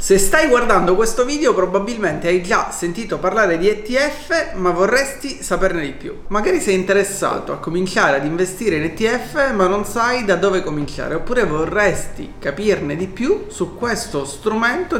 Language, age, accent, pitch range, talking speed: Italian, 30-49, native, 165-235 Hz, 160 wpm